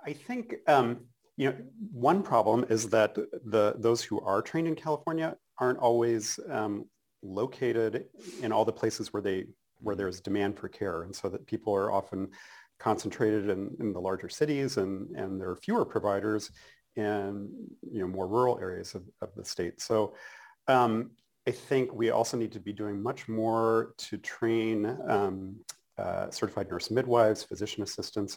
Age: 40-59